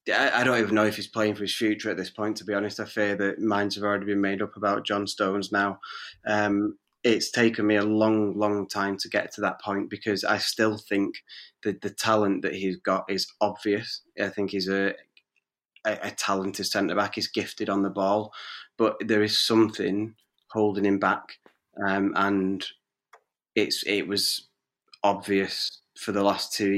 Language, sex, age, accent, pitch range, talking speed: English, male, 20-39, British, 100-105 Hz, 190 wpm